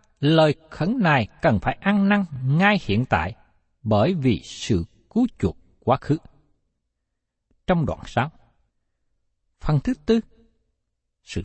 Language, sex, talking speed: Vietnamese, male, 125 wpm